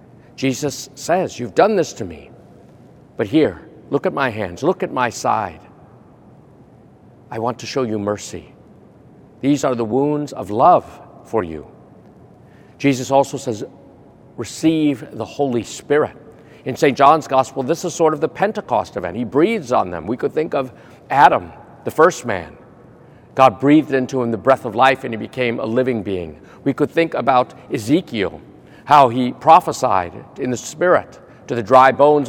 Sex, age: male, 50-69